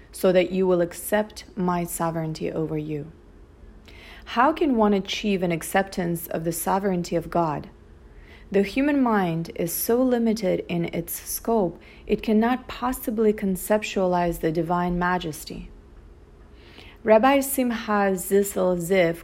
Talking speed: 125 wpm